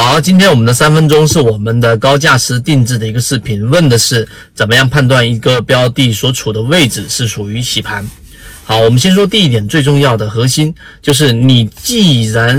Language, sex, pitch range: Chinese, male, 115-150 Hz